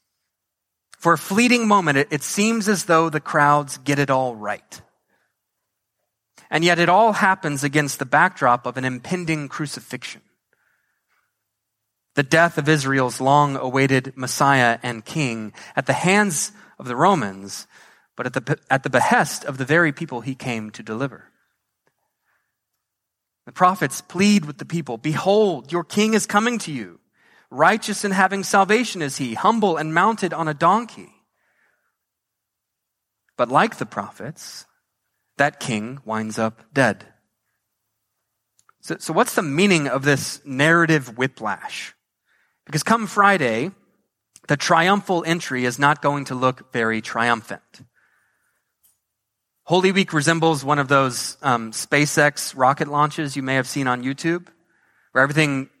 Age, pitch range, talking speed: 30-49, 125-170 Hz, 135 wpm